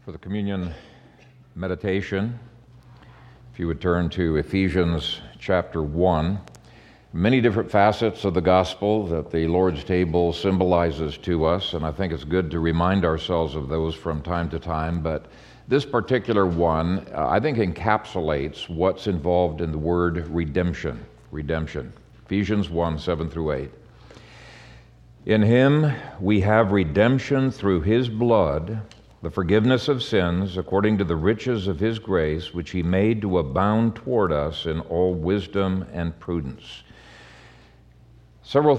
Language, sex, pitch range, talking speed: English, male, 85-105 Hz, 140 wpm